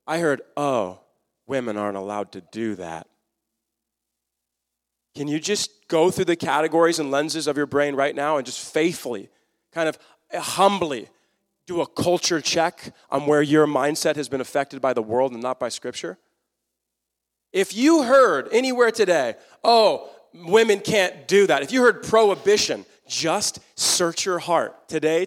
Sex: male